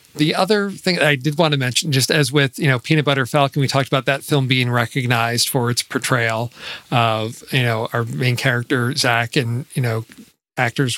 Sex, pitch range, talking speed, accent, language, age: male, 130-160 Hz, 210 wpm, American, English, 40-59